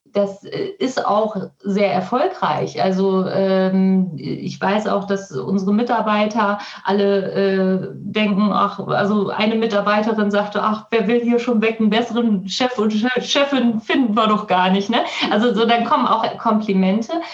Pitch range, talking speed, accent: 185-215 Hz, 145 wpm, German